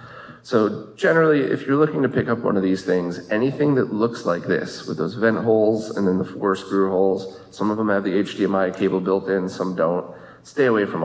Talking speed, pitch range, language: 225 wpm, 95-130 Hz, English